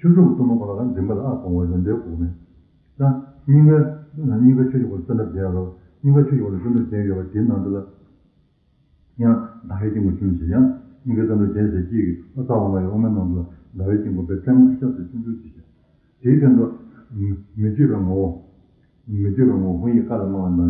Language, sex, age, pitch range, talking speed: Italian, male, 60-79, 90-125 Hz, 35 wpm